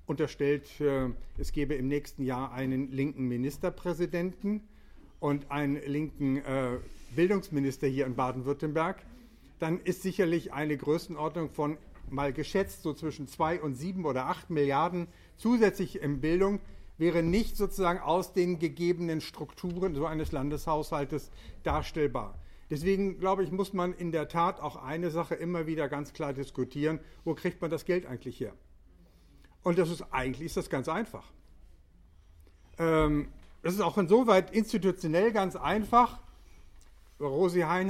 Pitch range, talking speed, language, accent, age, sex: 140-185 Hz, 140 wpm, German, German, 50-69, male